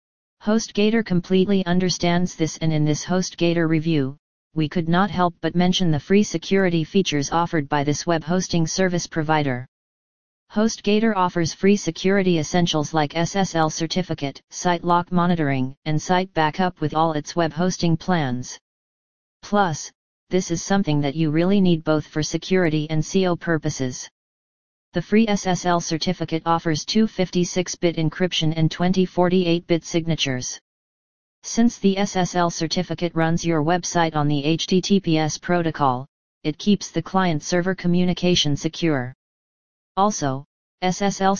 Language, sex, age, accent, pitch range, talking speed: English, female, 40-59, American, 155-185 Hz, 135 wpm